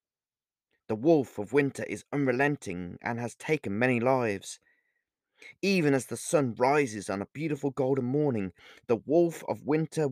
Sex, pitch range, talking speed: male, 105-145 Hz, 150 wpm